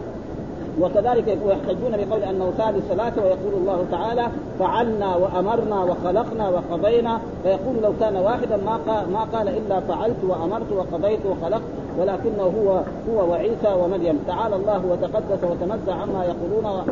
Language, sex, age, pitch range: Arabic, male, 40-59, 180-210 Hz